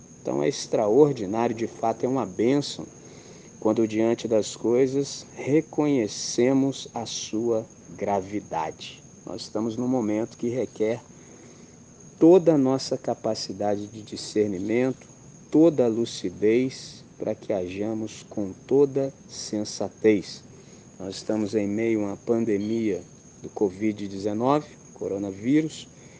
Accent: Brazilian